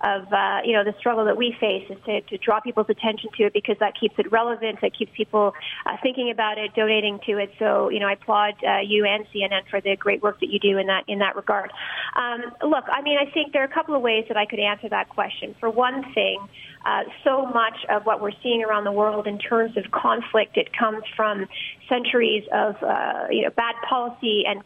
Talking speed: 240 wpm